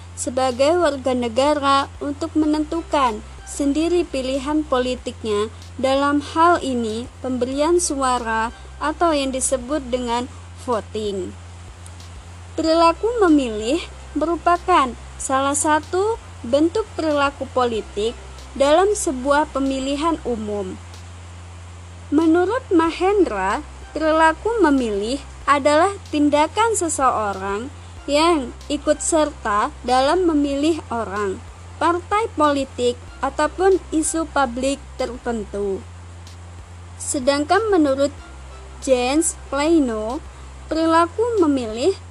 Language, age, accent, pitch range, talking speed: Indonesian, 20-39, native, 240-320 Hz, 80 wpm